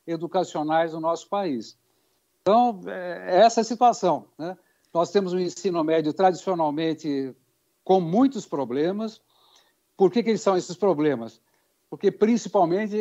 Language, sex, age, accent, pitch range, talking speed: Portuguese, male, 60-79, Brazilian, 160-210 Hz, 120 wpm